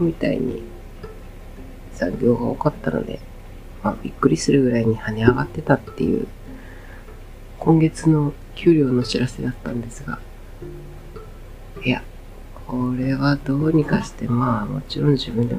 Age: 40-59